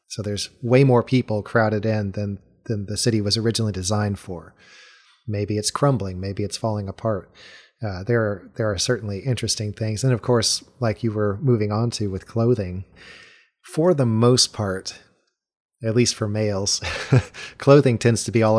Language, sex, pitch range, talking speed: English, male, 100-120 Hz, 175 wpm